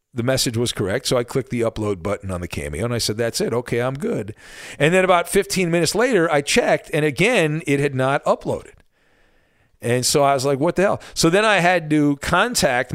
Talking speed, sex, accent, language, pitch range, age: 225 wpm, male, American, English, 125-170 Hz, 40-59